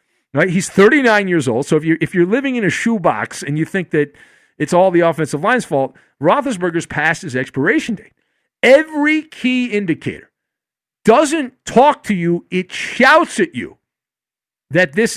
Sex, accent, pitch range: male, American, 150-220 Hz